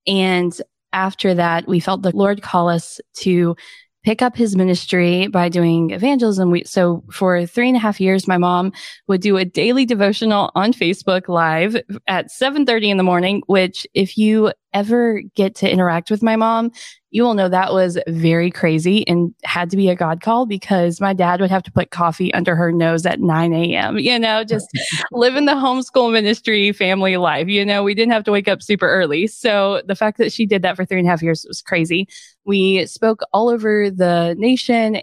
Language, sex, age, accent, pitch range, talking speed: English, female, 10-29, American, 175-215 Hz, 200 wpm